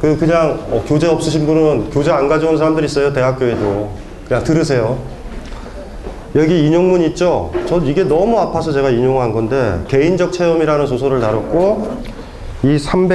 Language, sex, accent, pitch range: Korean, male, native, 115-155 Hz